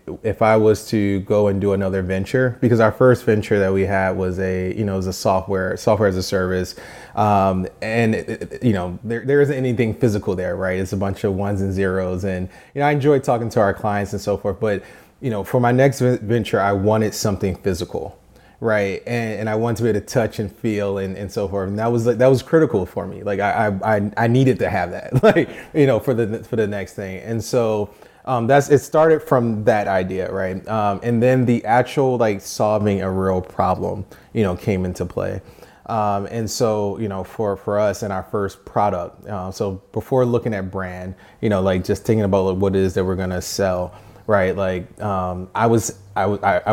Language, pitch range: English, 95-115 Hz